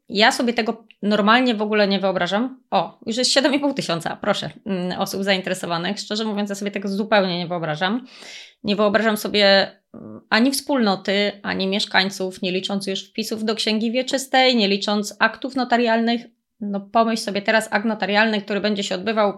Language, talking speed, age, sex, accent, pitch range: Polish, 160 wpm, 20-39, female, native, 195-230 Hz